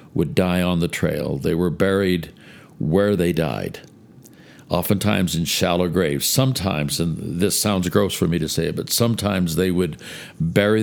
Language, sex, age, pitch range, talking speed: English, male, 60-79, 85-105 Hz, 160 wpm